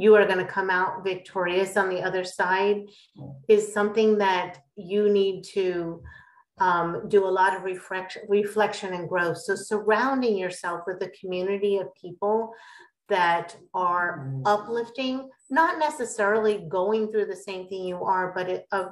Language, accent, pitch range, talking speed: English, American, 180-205 Hz, 150 wpm